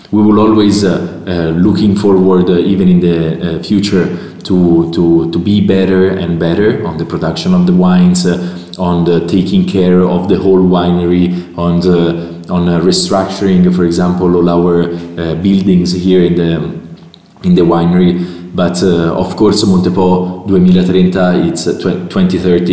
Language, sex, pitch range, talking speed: English, male, 85-95 Hz, 160 wpm